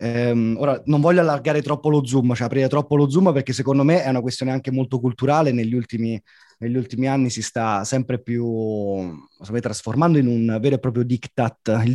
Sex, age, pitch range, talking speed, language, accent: male, 30-49, 120-150 Hz, 200 wpm, Italian, native